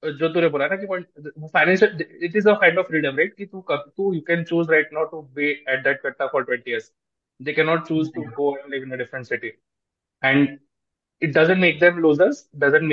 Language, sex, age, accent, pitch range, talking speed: Hindi, male, 20-39, native, 145-170 Hz, 55 wpm